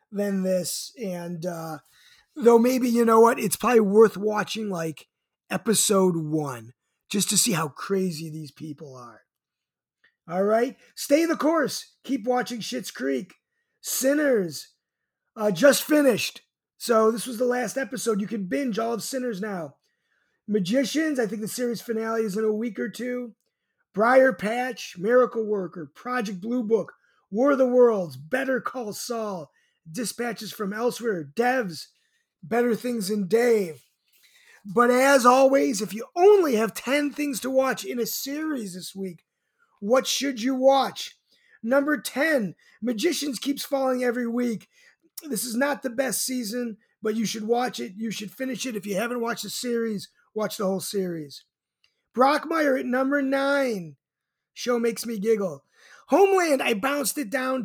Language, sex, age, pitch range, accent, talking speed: English, male, 30-49, 205-260 Hz, American, 155 wpm